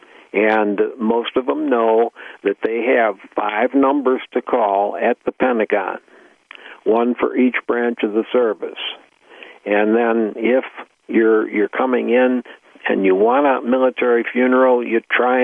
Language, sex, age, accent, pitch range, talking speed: English, male, 60-79, American, 110-130 Hz, 145 wpm